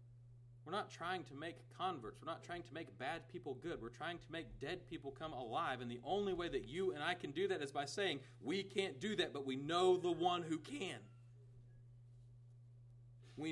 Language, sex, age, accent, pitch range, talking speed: English, male, 40-59, American, 120-165 Hz, 215 wpm